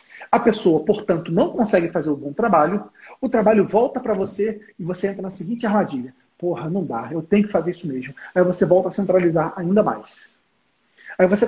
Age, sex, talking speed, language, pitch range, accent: 40-59, male, 200 wpm, Portuguese, 175-230 Hz, Brazilian